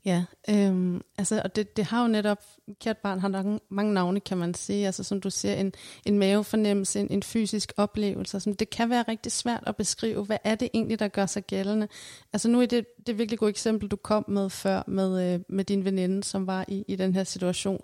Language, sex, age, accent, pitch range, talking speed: Danish, female, 30-49, native, 190-220 Hz, 240 wpm